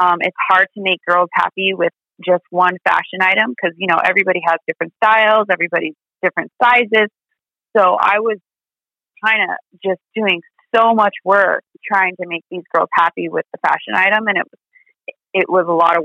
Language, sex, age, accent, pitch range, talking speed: English, female, 30-49, American, 175-195 Hz, 185 wpm